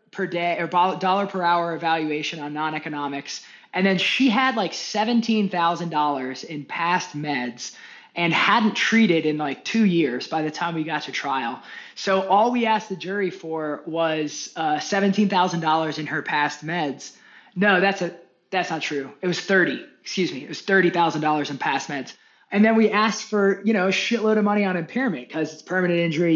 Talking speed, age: 195 wpm, 20-39